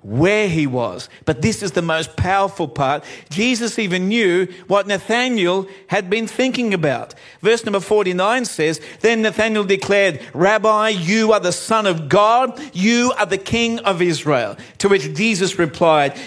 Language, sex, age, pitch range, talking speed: English, male, 50-69, 175-220 Hz, 160 wpm